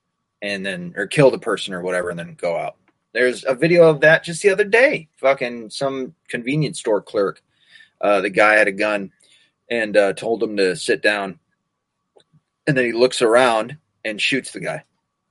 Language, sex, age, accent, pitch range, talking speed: English, male, 30-49, American, 100-160 Hz, 190 wpm